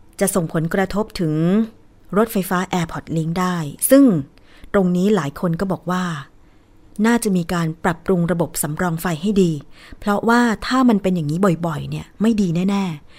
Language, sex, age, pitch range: Thai, female, 20-39, 165-200 Hz